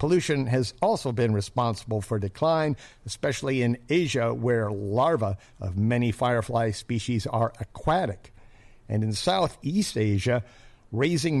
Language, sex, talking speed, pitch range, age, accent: English, male, 120 wpm, 110-145 Hz, 50-69, American